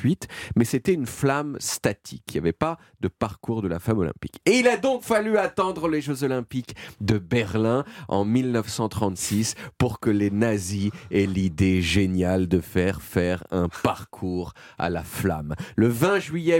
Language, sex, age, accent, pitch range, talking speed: French, male, 40-59, French, 95-125 Hz, 165 wpm